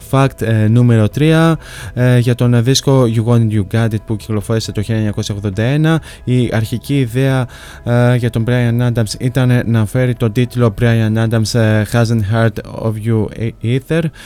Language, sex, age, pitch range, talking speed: Greek, male, 20-39, 110-125 Hz, 165 wpm